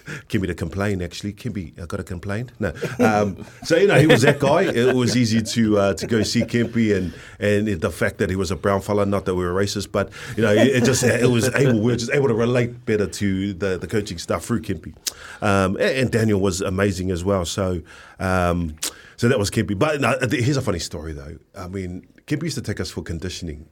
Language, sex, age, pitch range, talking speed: English, male, 30-49, 95-125 Hz, 240 wpm